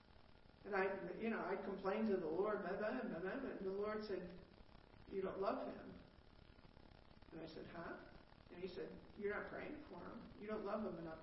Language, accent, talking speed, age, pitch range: English, American, 180 wpm, 50-69, 175-205 Hz